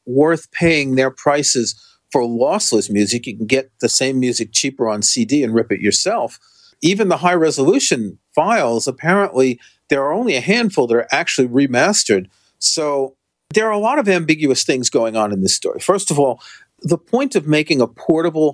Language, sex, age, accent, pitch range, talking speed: English, male, 40-59, American, 115-165 Hz, 185 wpm